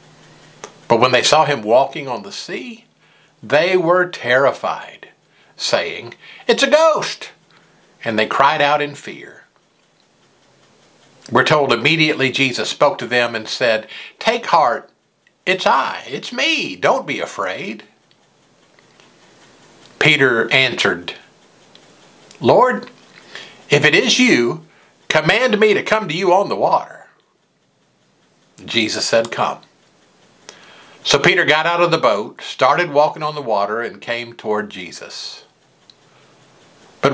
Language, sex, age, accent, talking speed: English, male, 50-69, American, 125 wpm